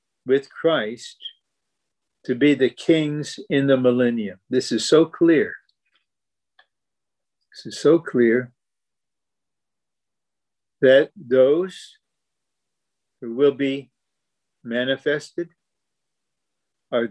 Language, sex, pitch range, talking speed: English, male, 130-180 Hz, 85 wpm